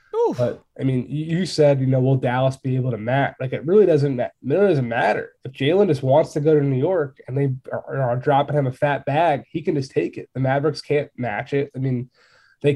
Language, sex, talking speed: English, male, 240 wpm